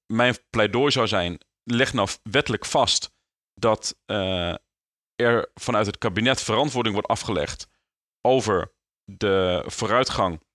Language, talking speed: Dutch, 115 wpm